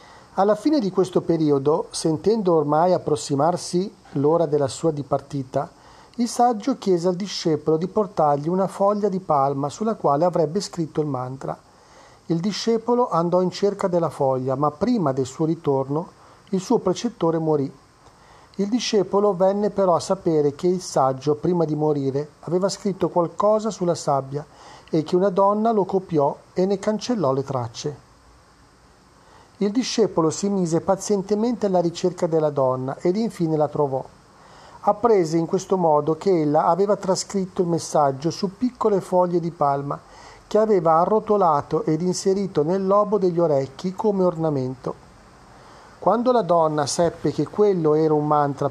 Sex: male